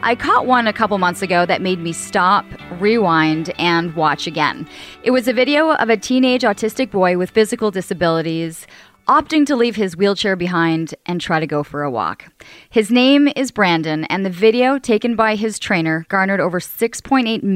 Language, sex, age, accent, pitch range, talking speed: English, female, 30-49, American, 165-220 Hz, 185 wpm